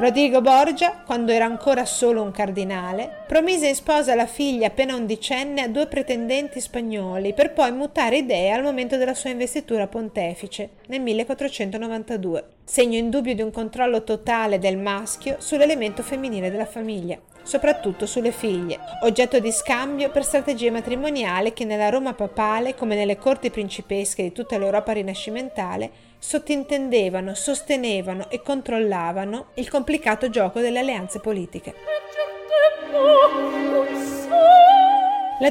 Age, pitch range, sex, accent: 40-59, 215-280 Hz, female, native